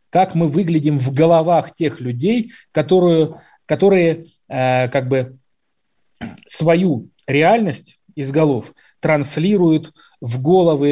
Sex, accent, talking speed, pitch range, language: male, native, 105 wpm, 130-175 Hz, Russian